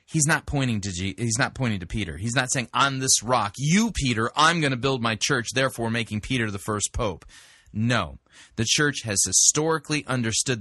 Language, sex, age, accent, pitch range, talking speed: English, male, 30-49, American, 110-140 Hz, 205 wpm